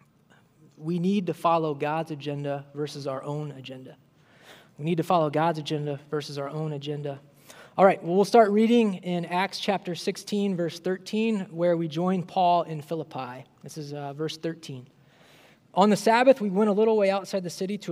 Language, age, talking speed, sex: English, 20-39, 180 wpm, male